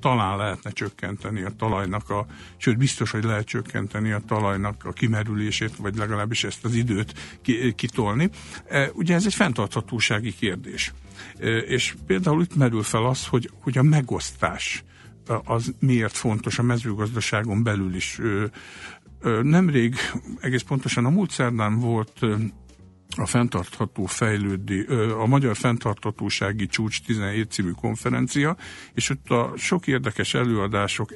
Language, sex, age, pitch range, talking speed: Hungarian, male, 60-79, 105-130 Hz, 130 wpm